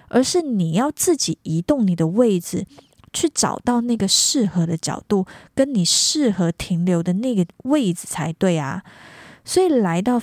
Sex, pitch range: female, 180-235 Hz